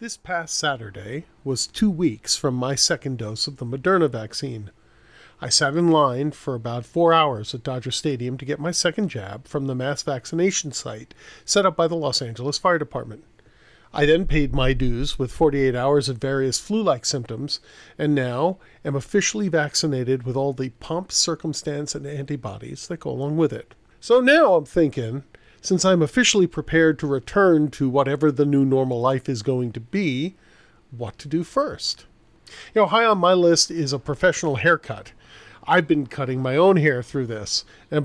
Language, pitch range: English, 130-165 Hz